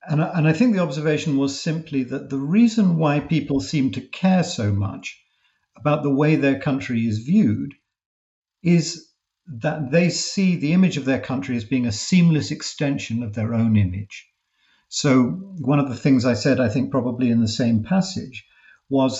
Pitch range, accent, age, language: 115-155 Hz, British, 50-69, English